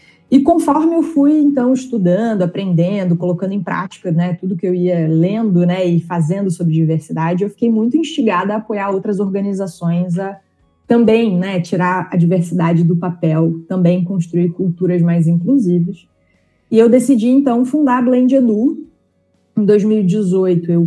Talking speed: 150 wpm